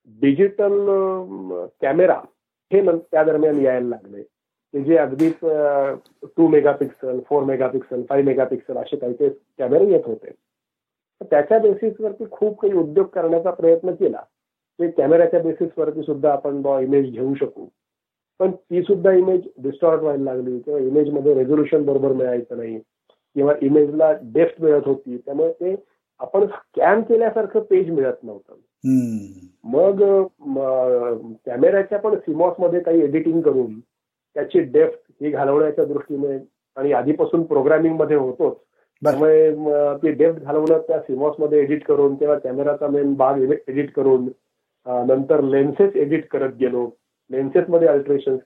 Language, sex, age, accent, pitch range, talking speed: Marathi, male, 40-59, native, 135-175 Hz, 130 wpm